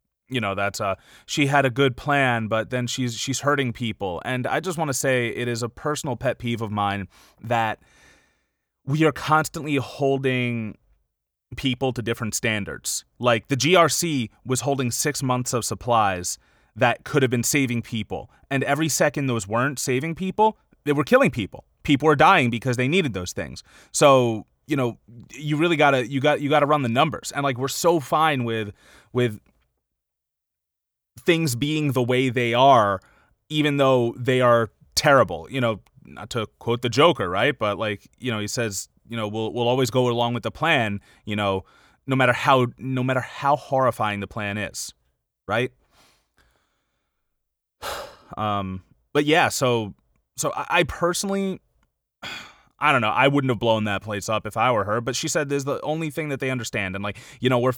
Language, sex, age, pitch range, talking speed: English, male, 30-49, 110-140 Hz, 185 wpm